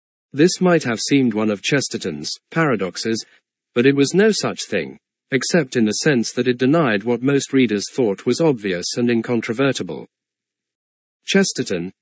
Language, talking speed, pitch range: English, 150 wpm, 110-145 Hz